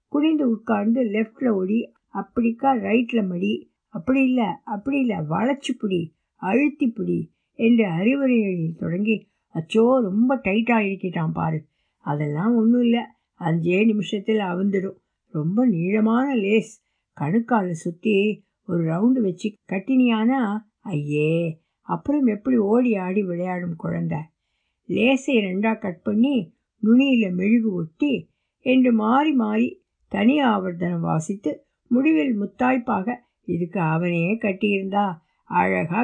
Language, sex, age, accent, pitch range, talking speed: Tamil, female, 60-79, native, 185-250 Hz, 105 wpm